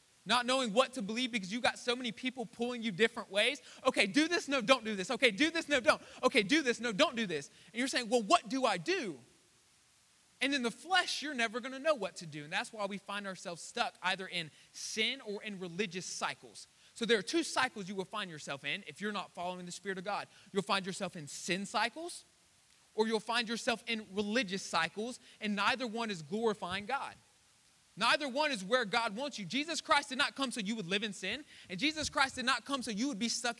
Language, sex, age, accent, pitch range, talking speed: English, male, 20-39, American, 155-245 Hz, 240 wpm